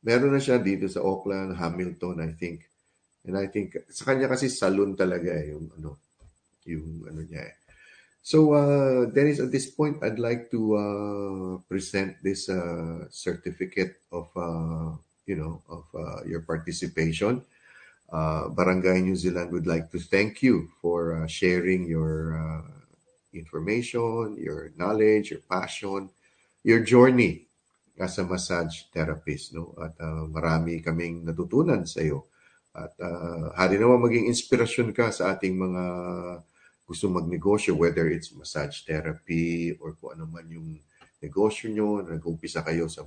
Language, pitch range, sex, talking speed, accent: Filipino, 80-100 Hz, male, 145 wpm, native